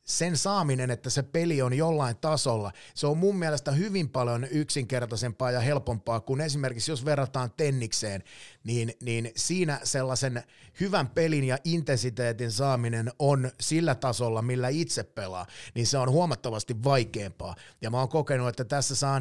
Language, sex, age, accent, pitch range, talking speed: Finnish, male, 30-49, native, 115-140 Hz, 155 wpm